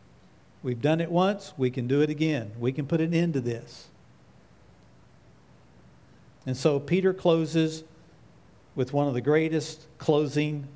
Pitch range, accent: 125-155 Hz, American